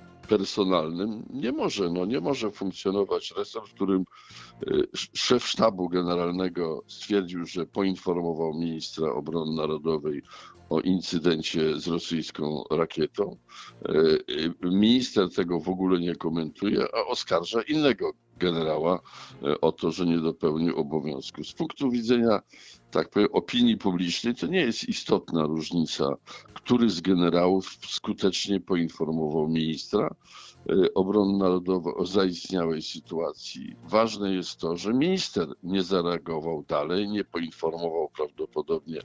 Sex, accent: male, native